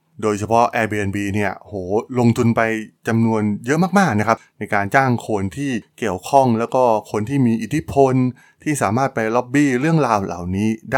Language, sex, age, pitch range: Thai, male, 20-39, 105-135 Hz